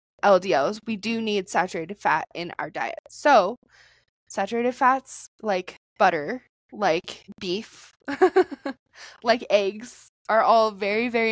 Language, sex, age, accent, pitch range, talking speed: English, female, 20-39, American, 190-240 Hz, 115 wpm